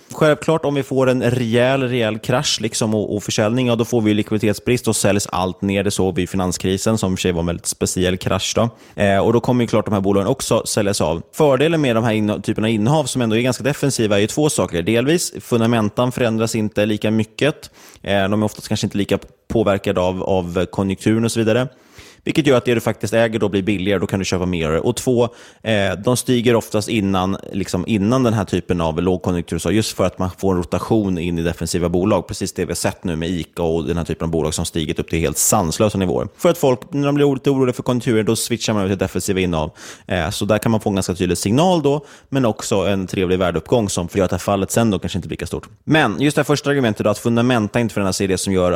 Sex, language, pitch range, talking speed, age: male, Swedish, 95-120 Hz, 245 wpm, 20-39